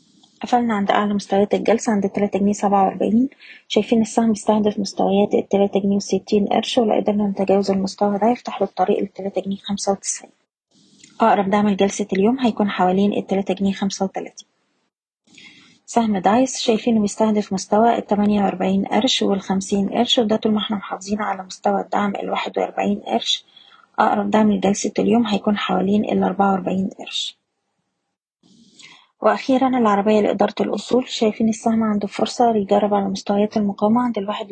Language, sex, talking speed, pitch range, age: Arabic, female, 135 wpm, 200-225 Hz, 20-39